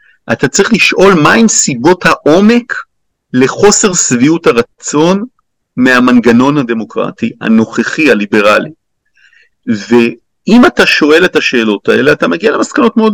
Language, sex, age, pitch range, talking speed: Hebrew, male, 50-69, 115-140 Hz, 105 wpm